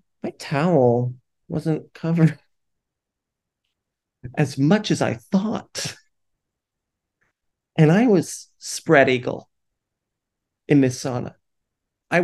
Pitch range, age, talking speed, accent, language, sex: 125-170 Hz, 30-49, 90 wpm, American, English, male